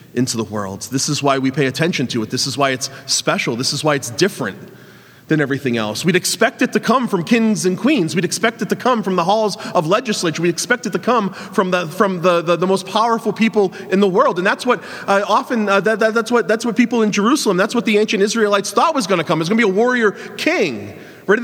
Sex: male